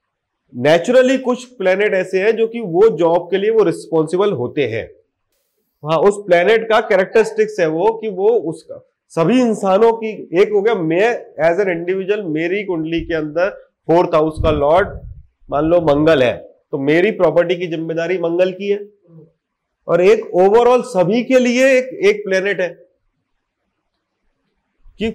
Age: 30-49